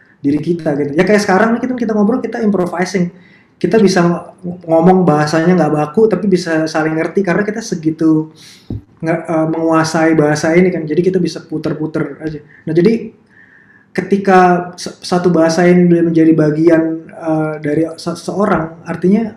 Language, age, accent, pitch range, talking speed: Indonesian, 20-39, native, 155-185 Hz, 150 wpm